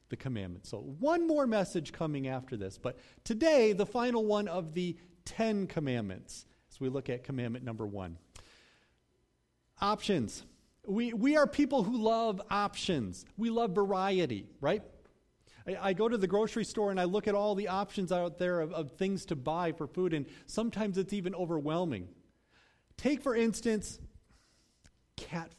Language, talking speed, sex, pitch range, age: English, 160 wpm, male, 170-245 Hz, 40-59